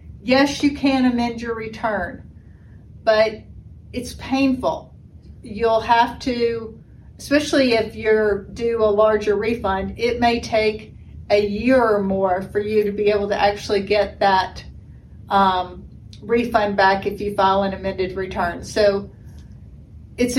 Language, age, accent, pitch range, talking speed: English, 50-69, American, 210-240 Hz, 135 wpm